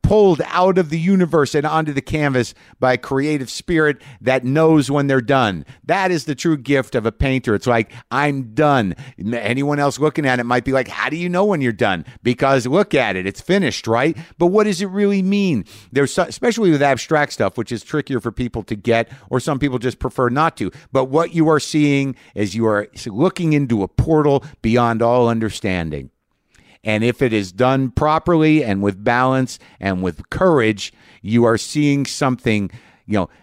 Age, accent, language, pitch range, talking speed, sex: 50-69, American, English, 115-150 Hz, 195 wpm, male